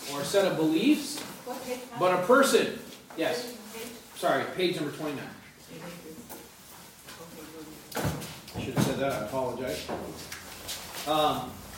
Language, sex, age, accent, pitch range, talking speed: English, male, 40-59, American, 155-220 Hz, 105 wpm